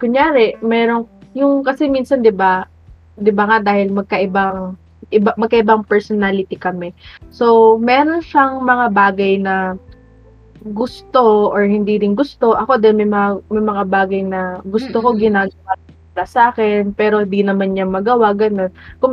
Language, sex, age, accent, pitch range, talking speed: Filipino, female, 20-39, native, 190-245 Hz, 140 wpm